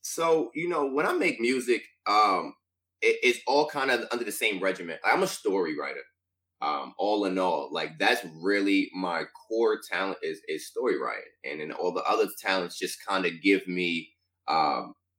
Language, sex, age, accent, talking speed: English, male, 20-39, American, 185 wpm